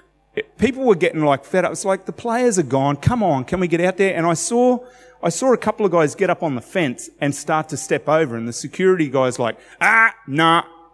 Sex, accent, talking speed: male, Australian, 245 wpm